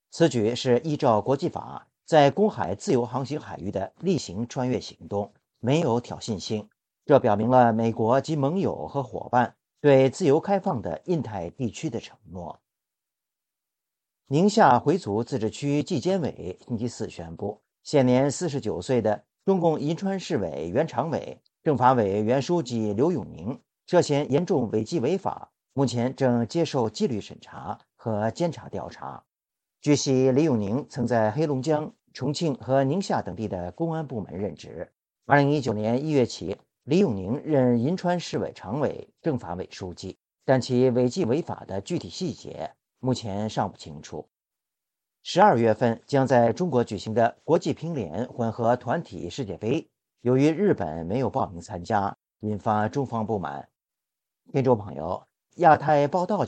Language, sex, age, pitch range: Chinese, male, 50-69, 110-150 Hz